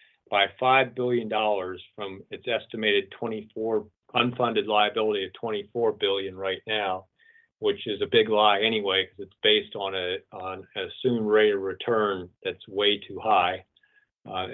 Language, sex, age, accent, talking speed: English, male, 40-59, American, 145 wpm